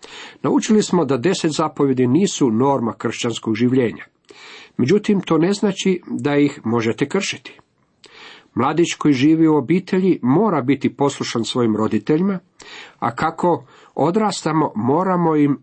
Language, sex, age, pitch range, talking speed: Croatian, male, 50-69, 110-150 Hz, 125 wpm